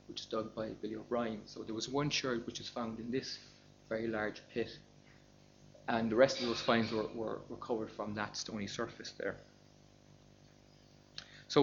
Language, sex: English, male